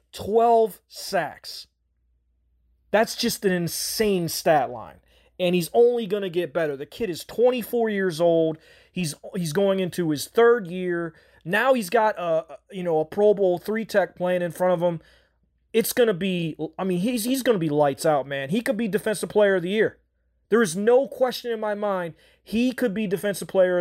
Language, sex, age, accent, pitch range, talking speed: English, male, 30-49, American, 165-210 Hz, 195 wpm